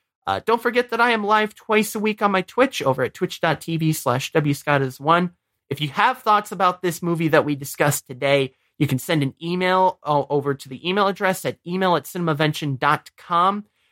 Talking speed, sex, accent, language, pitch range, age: 185 wpm, male, American, English, 135-180 Hz, 30-49